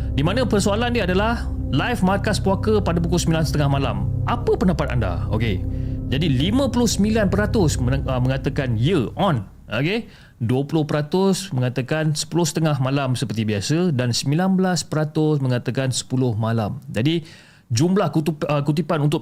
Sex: male